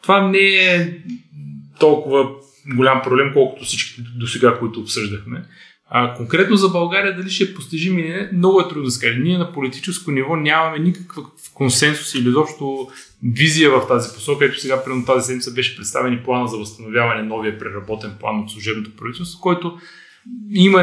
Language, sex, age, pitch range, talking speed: Bulgarian, male, 20-39, 110-145 Hz, 165 wpm